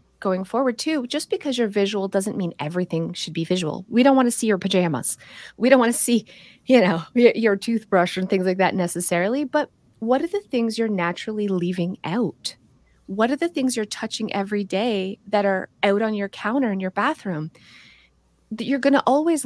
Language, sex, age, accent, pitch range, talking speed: English, female, 30-49, American, 185-245 Hz, 200 wpm